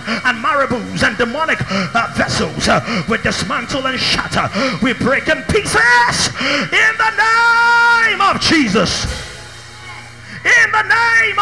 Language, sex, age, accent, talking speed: English, male, 30-49, British, 120 wpm